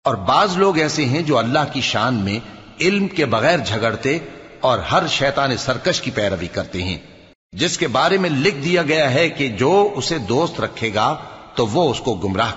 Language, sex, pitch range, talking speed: Urdu, male, 115-155 Hz, 195 wpm